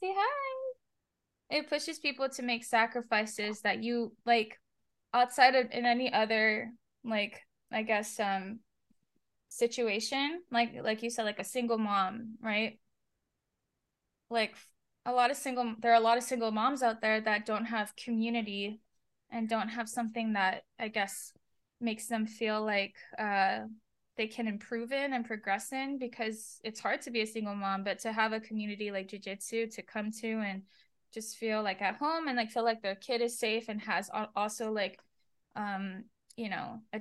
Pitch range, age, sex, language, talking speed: 205-235 Hz, 10-29, female, English, 175 wpm